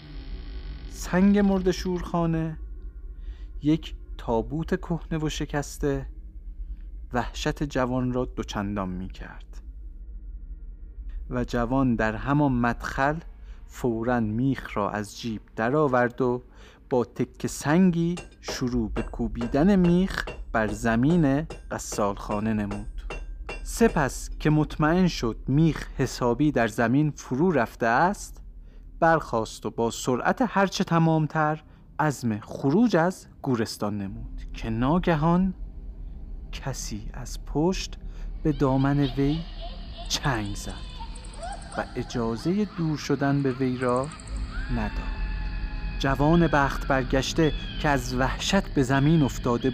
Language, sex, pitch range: Persian, male, 100-155 Hz